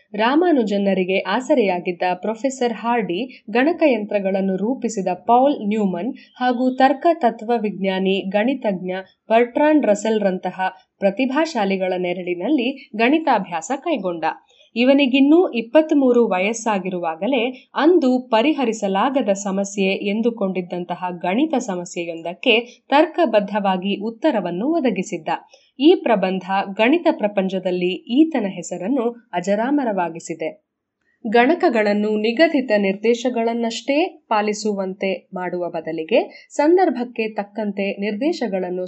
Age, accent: 20-39, native